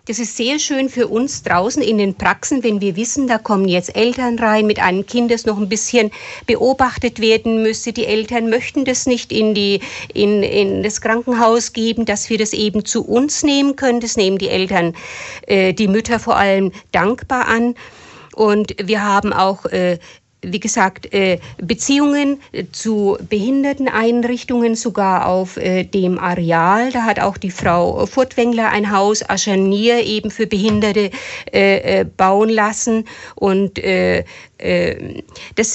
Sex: female